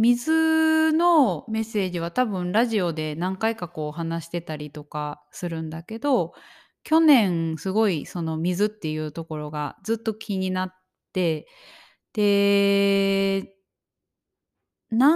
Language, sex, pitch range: Japanese, female, 160-220 Hz